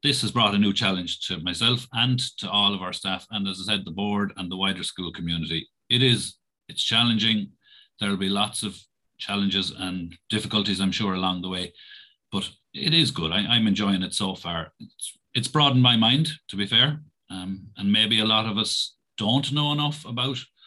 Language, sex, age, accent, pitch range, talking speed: English, male, 40-59, Irish, 100-125 Hz, 205 wpm